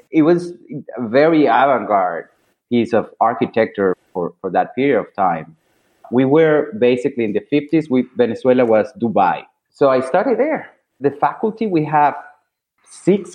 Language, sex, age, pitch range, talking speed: English, male, 30-49, 120-175 Hz, 145 wpm